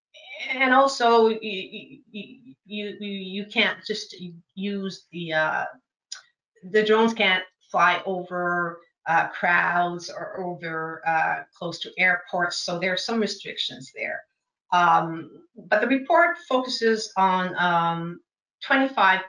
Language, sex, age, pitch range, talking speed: English, female, 40-59, 170-220 Hz, 120 wpm